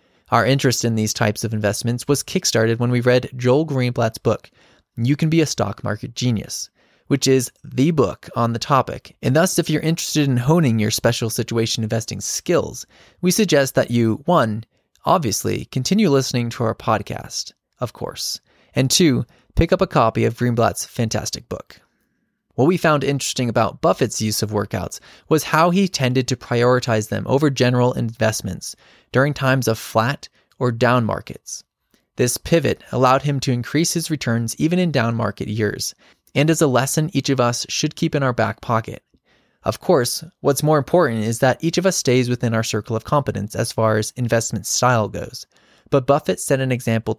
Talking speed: 180 wpm